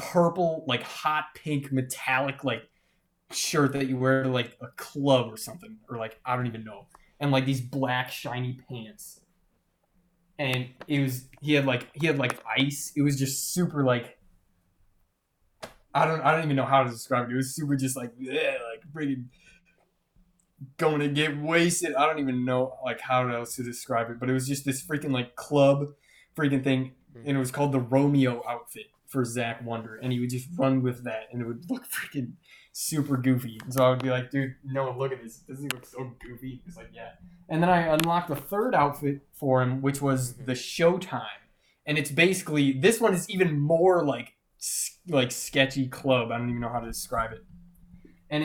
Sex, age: male, 20-39